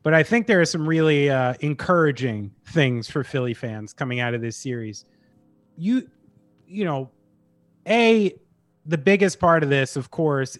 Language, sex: English, male